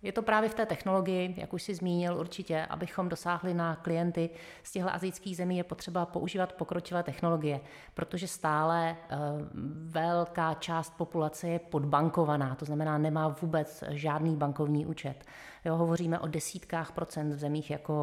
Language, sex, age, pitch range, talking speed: Czech, female, 30-49, 155-185 Hz, 150 wpm